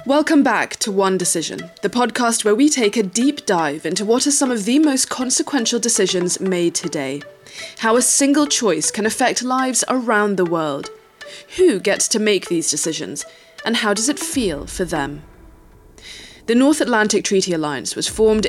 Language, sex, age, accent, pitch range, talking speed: English, female, 20-39, British, 170-240 Hz, 175 wpm